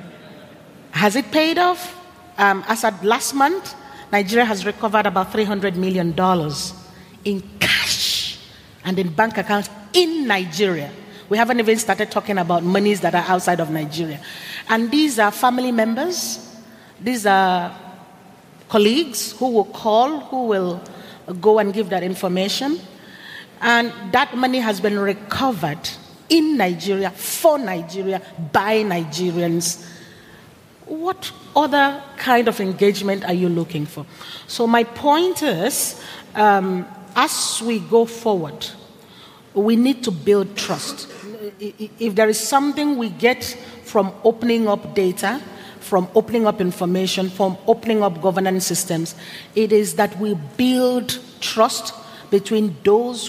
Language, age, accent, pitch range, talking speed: German, 40-59, Nigerian, 190-235 Hz, 130 wpm